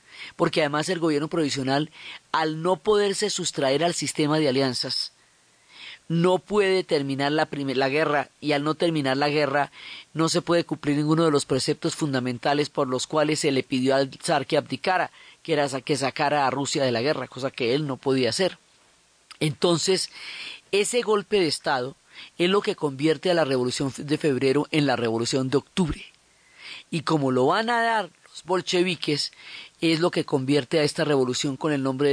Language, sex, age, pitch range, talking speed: Spanish, female, 40-59, 135-170 Hz, 180 wpm